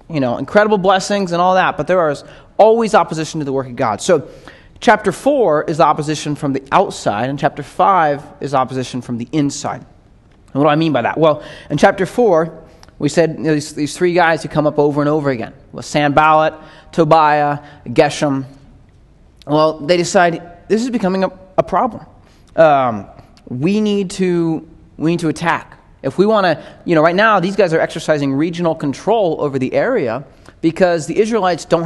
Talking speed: 190 wpm